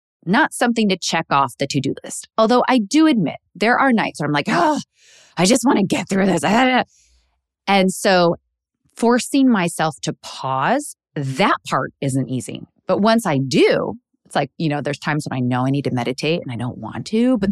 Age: 30-49